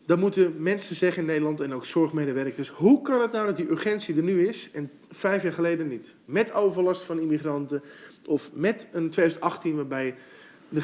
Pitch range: 155-195 Hz